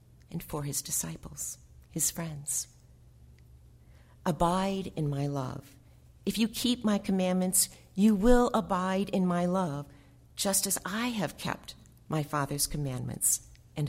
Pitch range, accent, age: 135-200 Hz, American, 40-59